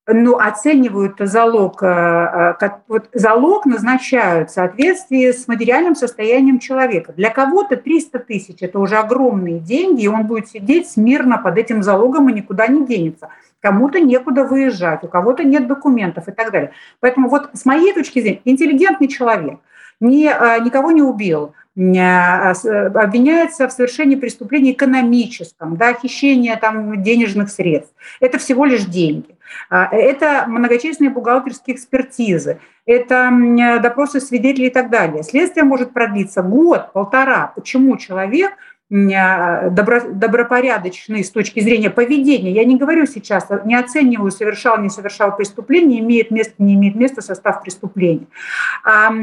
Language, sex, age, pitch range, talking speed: Russian, female, 50-69, 200-260 Hz, 135 wpm